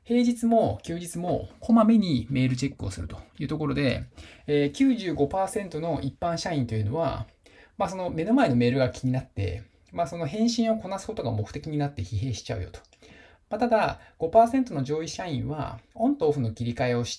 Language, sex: Japanese, male